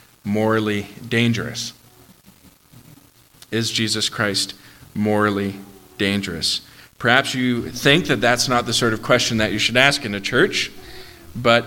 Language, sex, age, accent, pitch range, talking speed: English, male, 40-59, American, 100-120 Hz, 130 wpm